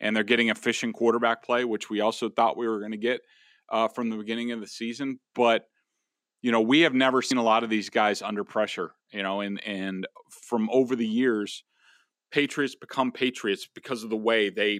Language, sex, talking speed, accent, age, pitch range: English, male, 210 wpm, American, 40-59, 110-135 Hz